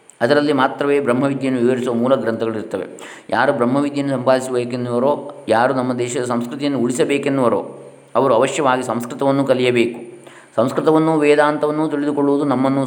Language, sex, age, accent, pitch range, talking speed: Kannada, male, 20-39, native, 115-140 Hz, 105 wpm